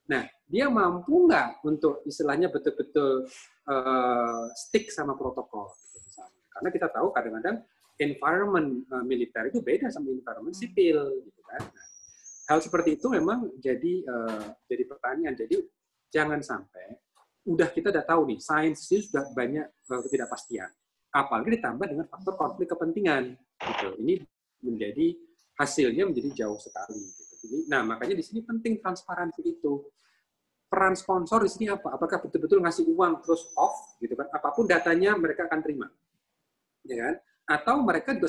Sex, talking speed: male, 140 wpm